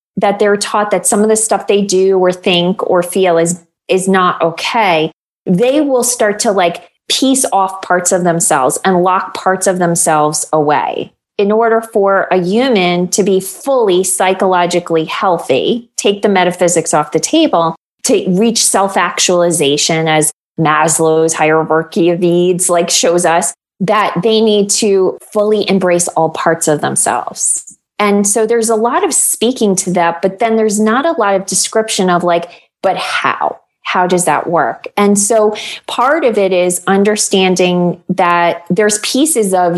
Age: 20-39